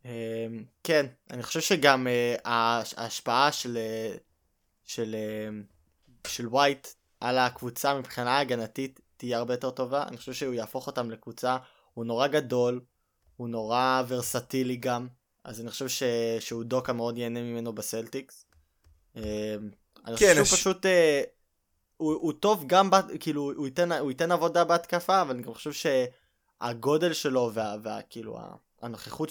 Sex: male